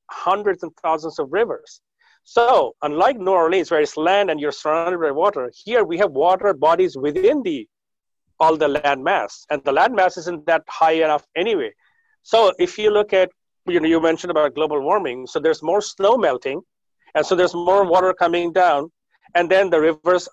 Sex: male